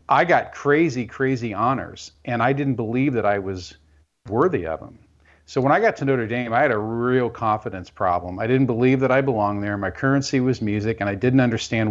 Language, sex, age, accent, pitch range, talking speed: English, male, 40-59, American, 95-125 Hz, 215 wpm